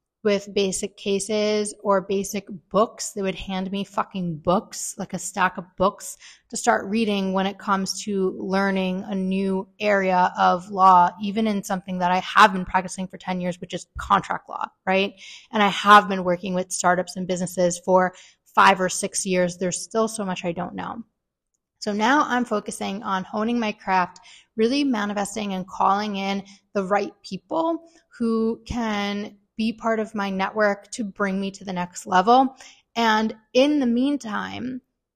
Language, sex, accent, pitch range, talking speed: English, female, American, 190-235 Hz, 170 wpm